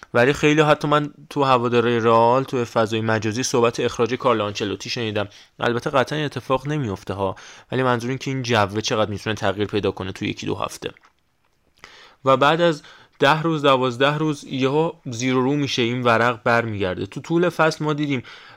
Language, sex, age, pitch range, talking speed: Persian, male, 20-39, 115-145 Hz, 175 wpm